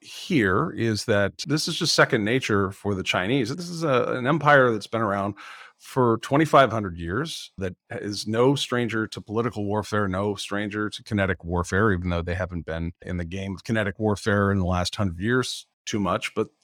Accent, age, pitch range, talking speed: American, 40-59, 95-125 Hz, 190 wpm